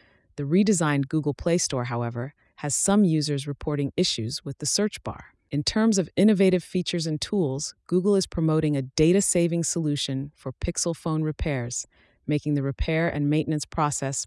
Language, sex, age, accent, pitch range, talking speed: English, female, 30-49, American, 135-170 Hz, 160 wpm